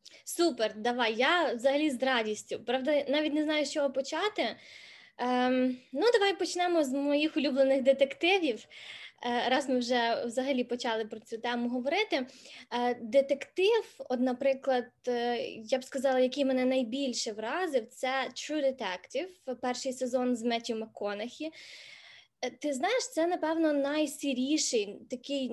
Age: 20-39